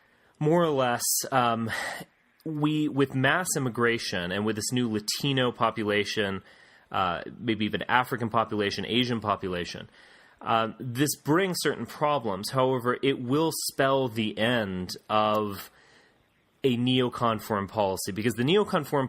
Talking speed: 125 wpm